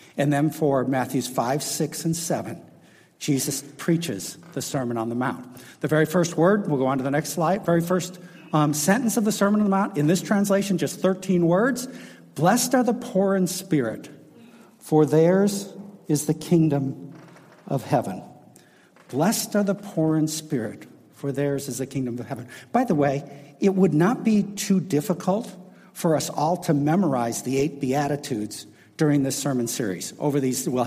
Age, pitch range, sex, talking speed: 60-79, 140-190 Hz, male, 180 wpm